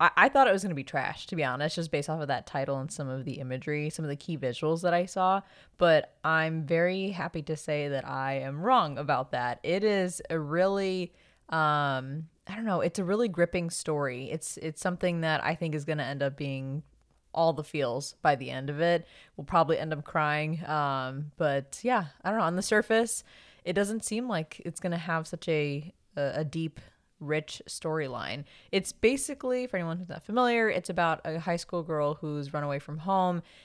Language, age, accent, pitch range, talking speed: English, 20-39, American, 145-175 Hz, 220 wpm